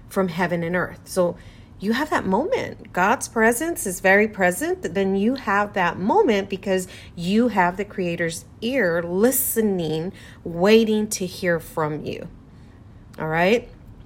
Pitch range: 170-220 Hz